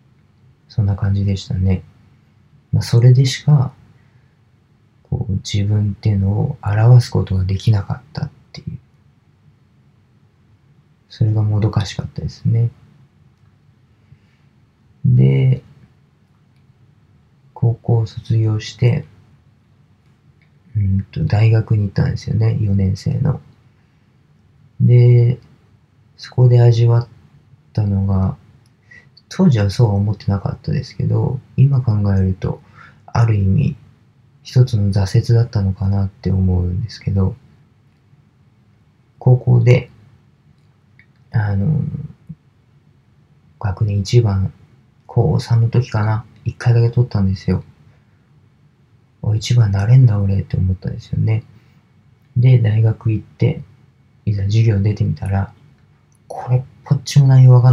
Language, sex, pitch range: Japanese, male, 110-135 Hz